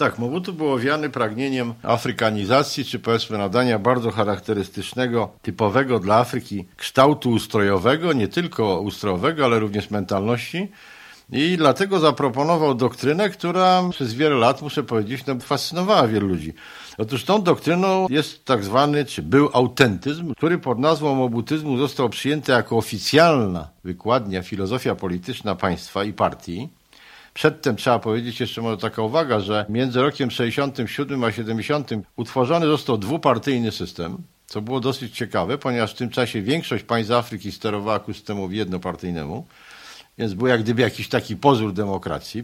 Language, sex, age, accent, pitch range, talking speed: Polish, male, 50-69, native, 110-140 Hz, 140 wpm